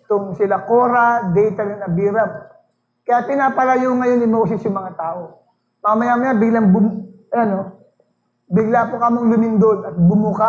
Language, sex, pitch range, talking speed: English, male, 210-285 Hz, 145 wpm